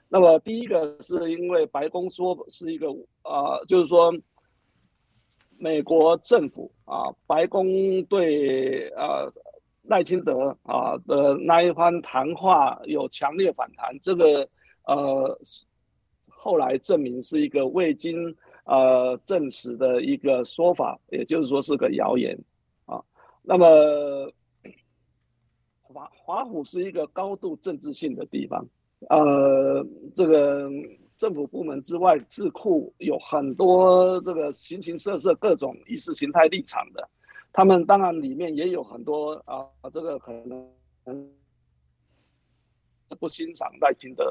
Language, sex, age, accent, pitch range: Chinese, male, 50-69, native, 140-205 Hz